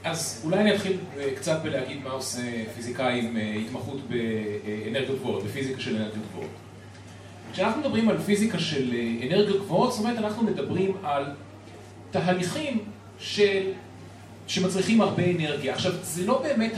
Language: Hebrew